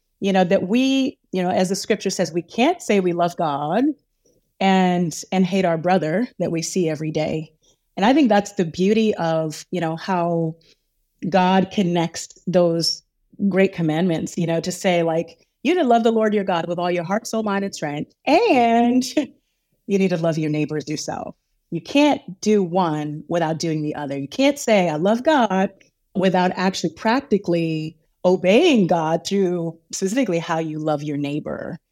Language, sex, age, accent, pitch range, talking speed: English, female, 30-49, American, 165-210 Hz, 180 wpm